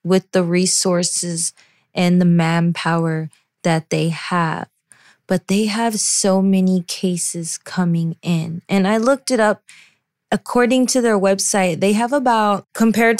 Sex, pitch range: female, 175-205 Hz